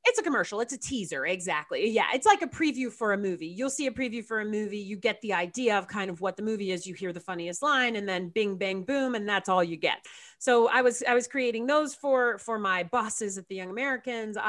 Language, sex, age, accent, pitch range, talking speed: English, female, 30-49, American, 190-250 Hz, 260 wpm